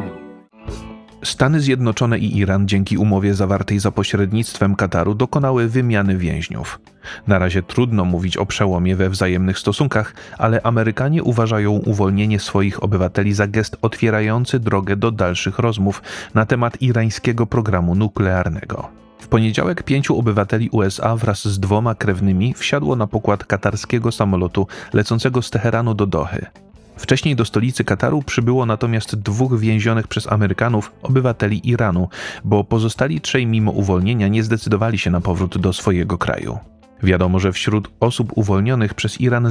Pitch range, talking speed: 100-115 Hz, 140 wpm